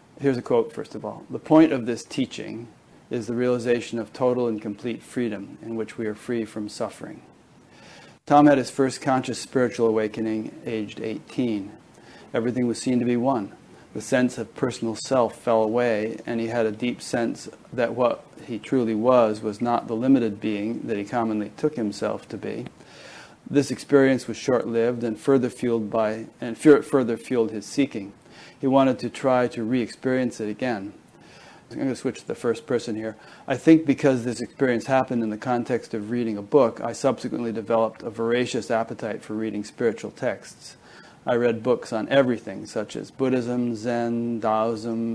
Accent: American